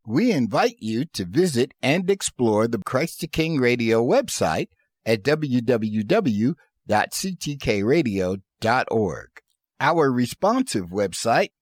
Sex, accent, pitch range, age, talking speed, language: male, American, 115-185 Hz, 50-69, 95 wpm, English